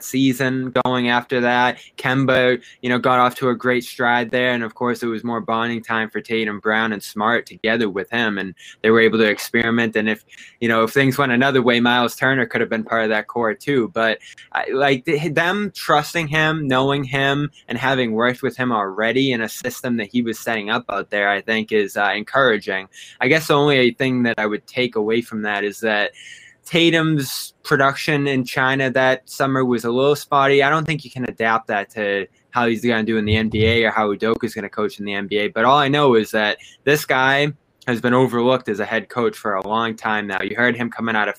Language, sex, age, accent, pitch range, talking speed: English, male, 20-39, American, 110-135 Hz, 230 wpm